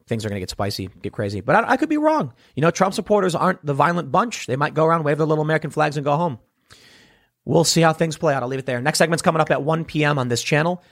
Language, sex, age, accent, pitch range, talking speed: English, male, 30-49, American, 130-175 Hz, 290 wpm